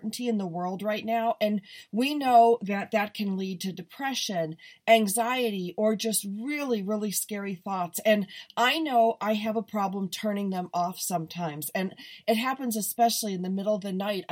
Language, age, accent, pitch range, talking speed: English, 40-59, American, 185-230 Hz, 175 wpm